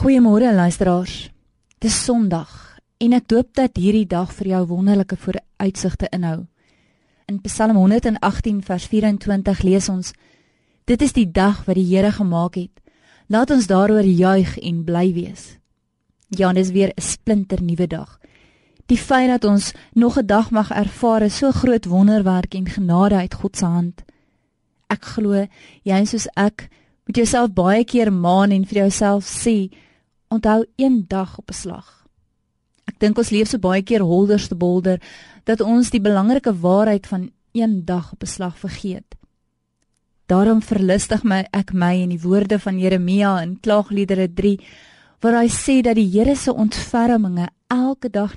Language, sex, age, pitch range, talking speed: Dutch, female, 20-39, 185-225 Hz, 160 wpm